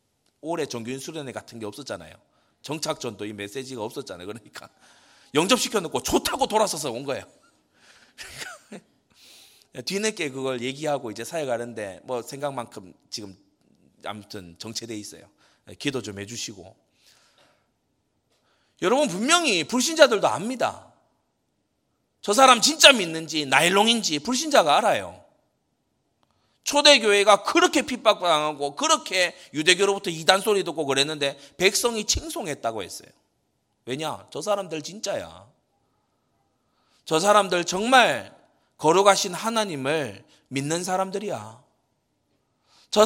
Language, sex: Korean, male